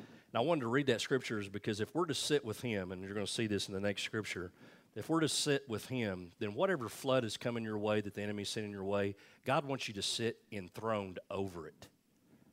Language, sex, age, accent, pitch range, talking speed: English, male, 40-59, American, 100-125 Hz, 250 wpm